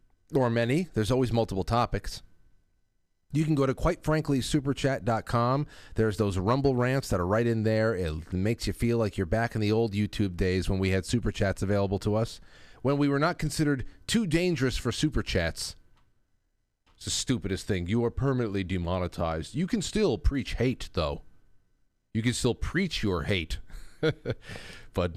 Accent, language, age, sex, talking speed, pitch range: American, English, 40-59, male, 175 wpm, 95-125 Hz